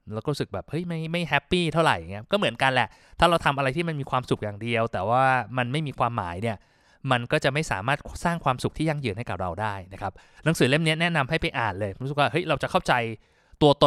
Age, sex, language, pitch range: 20-39, male, Thai, 120-160 Hz